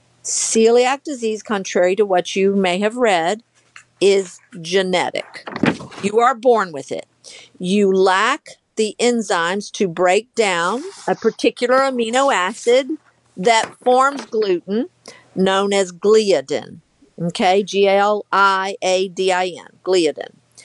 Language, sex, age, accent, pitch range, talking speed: English, female, 50-69, American, 180-225 Hz, 105 wpm